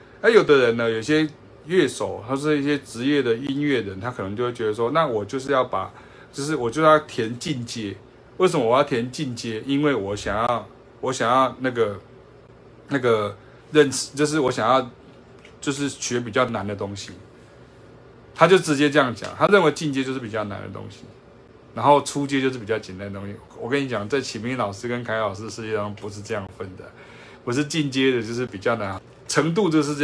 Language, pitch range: Chinese, 110-145 Hz